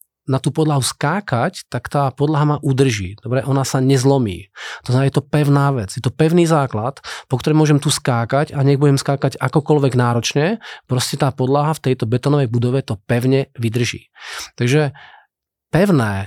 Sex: male